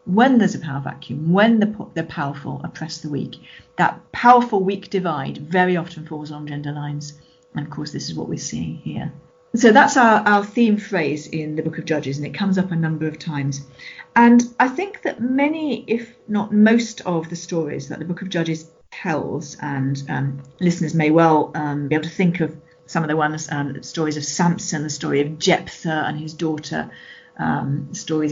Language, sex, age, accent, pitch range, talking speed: English, female, 40-59, British, 150-200 Hz, 205 wpm